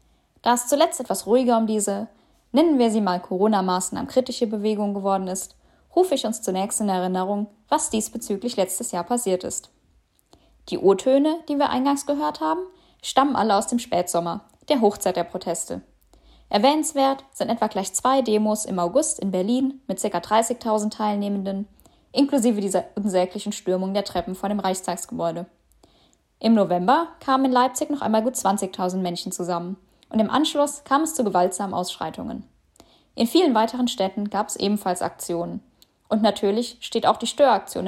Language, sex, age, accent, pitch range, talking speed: German, female, 10-29, German, 190-245 Hz, 160 wpm